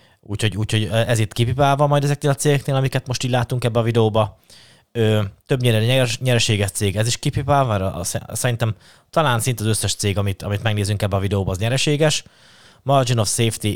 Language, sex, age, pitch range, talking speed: Hungarian, male, 20-39, 105-125 Hz, 190 wpm